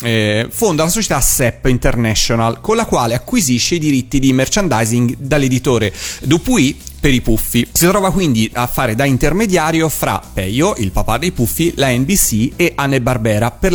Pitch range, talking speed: 115-155 Hz, 165 wpm